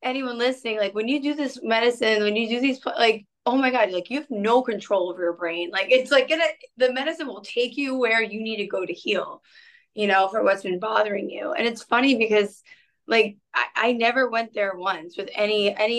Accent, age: American, 20-39